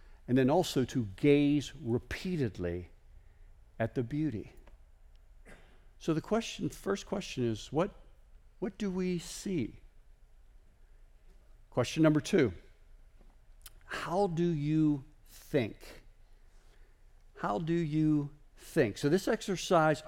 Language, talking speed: English, 100 wpm